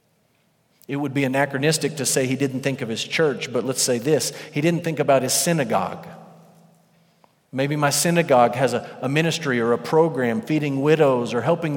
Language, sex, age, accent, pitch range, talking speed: English, male, 40-59, American, 130-160 Hz, 185 wpm